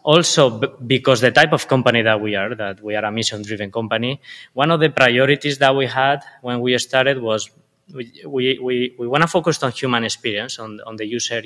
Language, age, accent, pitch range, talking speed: English, 20-39, Spanish, 110-135 Hz, 215 wpm